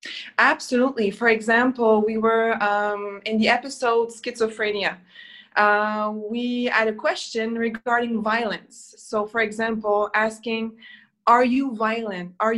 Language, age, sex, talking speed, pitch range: English, 20-39, female, 120 wpm, 210-245 Hz